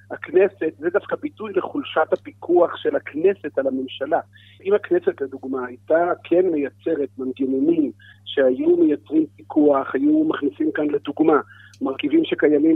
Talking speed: 120 wpm